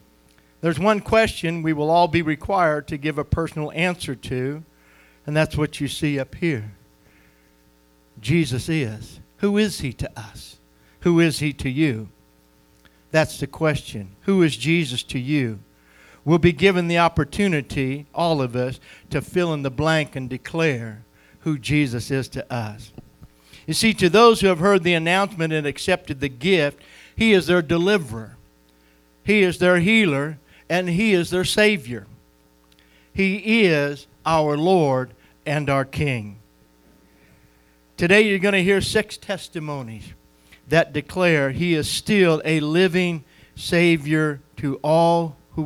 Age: 60-79